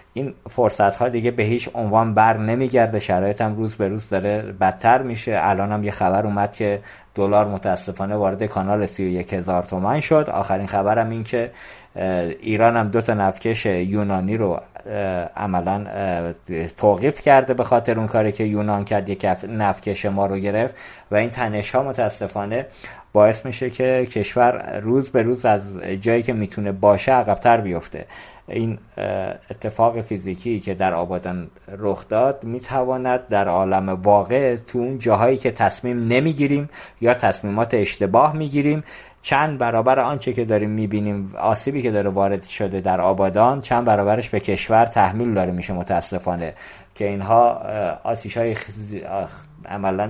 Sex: male